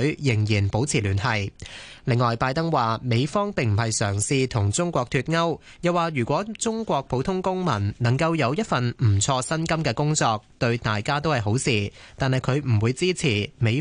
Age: 20-39